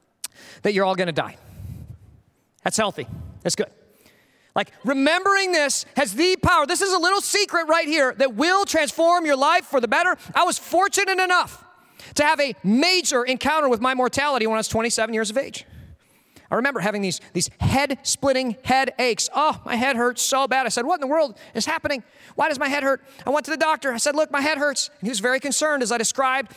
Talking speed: 210 wpm